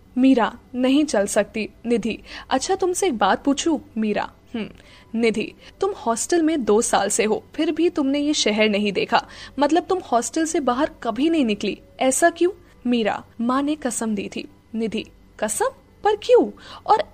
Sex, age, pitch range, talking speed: female, 10-29, 225-310 Hz, 165 wpm